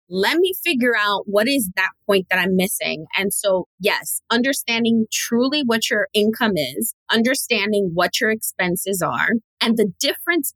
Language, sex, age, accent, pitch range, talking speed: English, female, 20-39, American, 185-240 Hz, 160 wpm